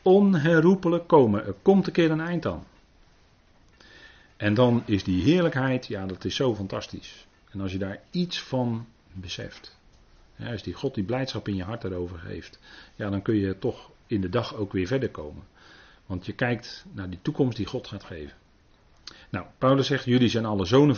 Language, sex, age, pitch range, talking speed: Dutch, male, 40-59, 95-125 Hz, 185 wpm